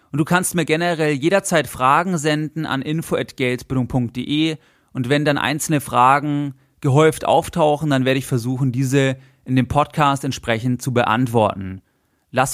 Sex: male